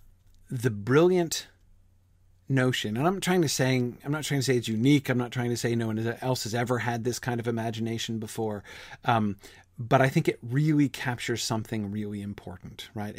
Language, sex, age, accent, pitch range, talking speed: English, male, 40-59, American, 105-140 Hz, 190 wpm